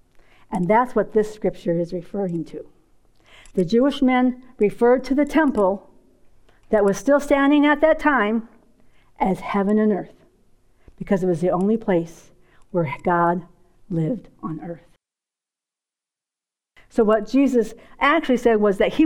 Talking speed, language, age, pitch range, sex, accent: 140 wpm, English, 50-69, 225-340 Hz, female, American